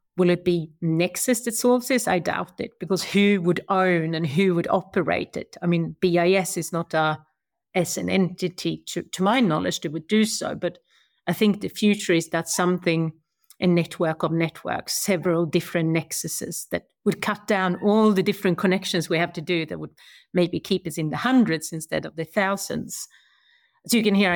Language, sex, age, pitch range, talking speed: English, female, 40-59, 170-195 Hz, 190 wpm